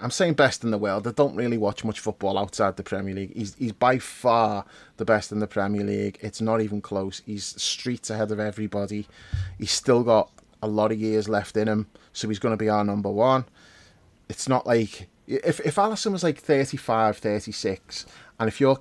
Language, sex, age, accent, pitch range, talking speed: English, male, 30-49, British, 105-120 Hz, 210 wpm